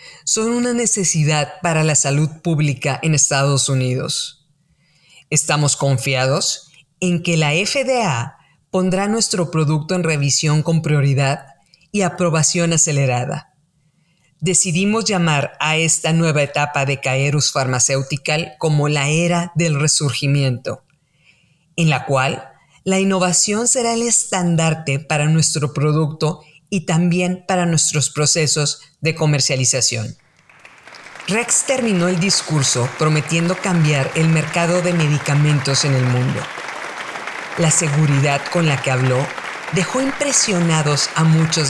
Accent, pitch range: Mexican, 140-170 Hz